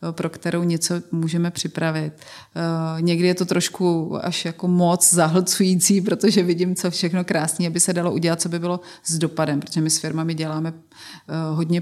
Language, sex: Czech, female